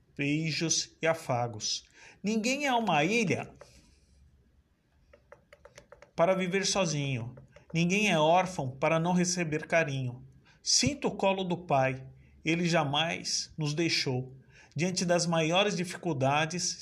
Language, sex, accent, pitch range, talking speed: Portuguese, male, Brazilian, 135-180 Hz, 105 wpm